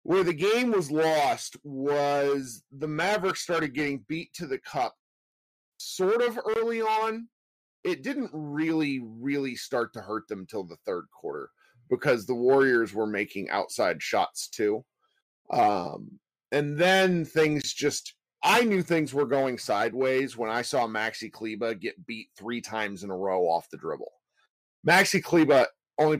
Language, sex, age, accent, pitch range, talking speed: English, male, 30-49, American, 120-160 Hz, 155 wpm